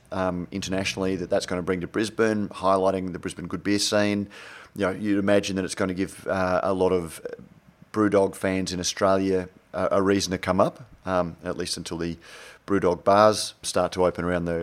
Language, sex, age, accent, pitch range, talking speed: English, male, 30-49, Australian, 90-105 Hz, 210 wpm